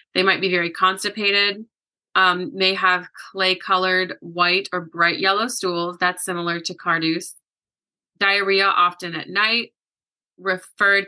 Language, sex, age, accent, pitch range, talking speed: English, female, 20-39, American, 175-195 Hz, 125 wpm